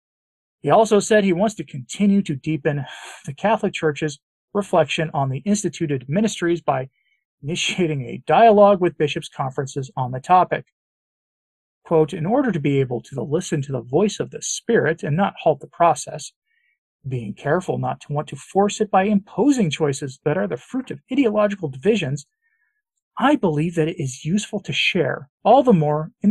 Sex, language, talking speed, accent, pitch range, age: male, English, 175 wpm, American, 150-215 Hz, 40-59